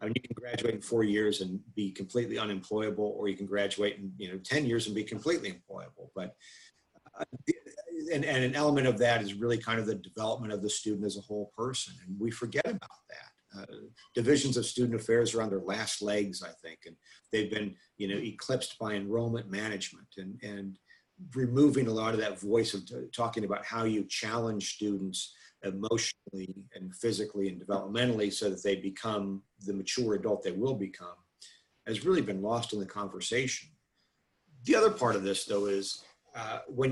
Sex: male